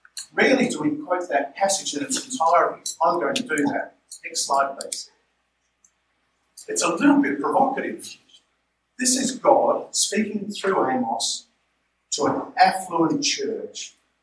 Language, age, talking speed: English, 50-69, 130 wpm